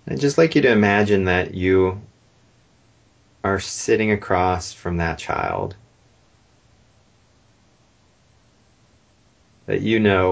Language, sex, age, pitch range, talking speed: English, male, 30-49, 90-110 Hz, 100 wpm